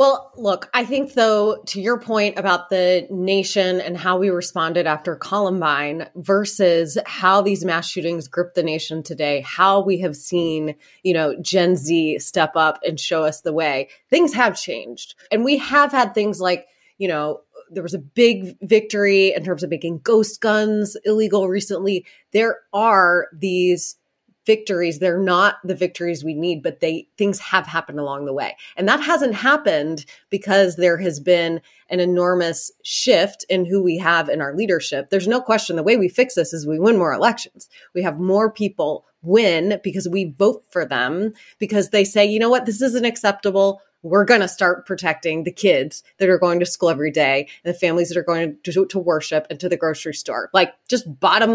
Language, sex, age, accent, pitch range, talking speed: English, female, 20-39, American, 170-215 Hz, 190 wpm